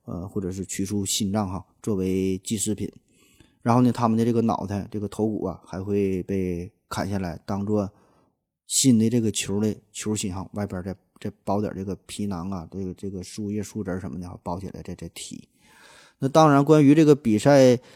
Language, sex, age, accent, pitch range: Chinese, male, 20-39, native, 100-120 Hz